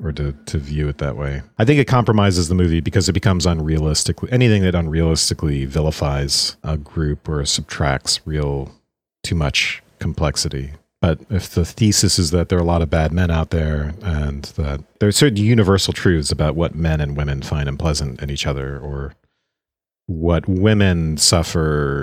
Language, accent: English, American